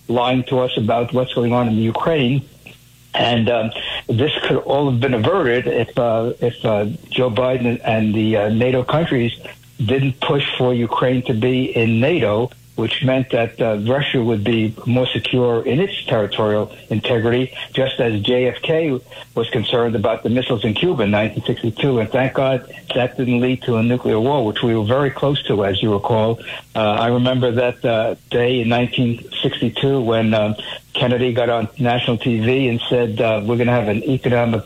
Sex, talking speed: male, 180 wpm